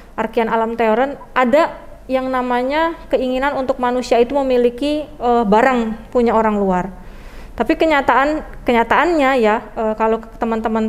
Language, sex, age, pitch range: Indonesian, female, 20-39, 225-260 Hz